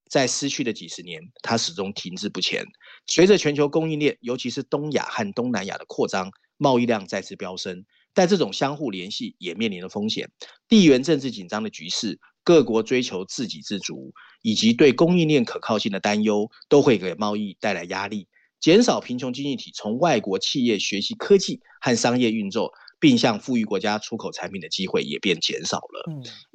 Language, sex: Chinese, male